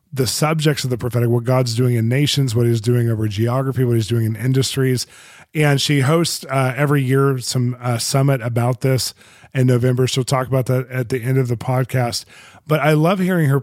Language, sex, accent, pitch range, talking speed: English, male, American, 120-140 Hz, 210 wpm